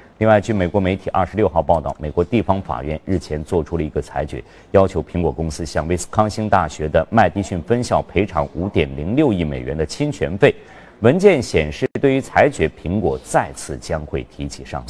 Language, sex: Chinese, male